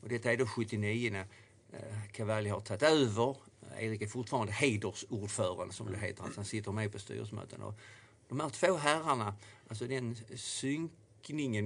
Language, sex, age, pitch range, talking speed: Swedish, male, 50-69, 105-120 Hz, 160 wpm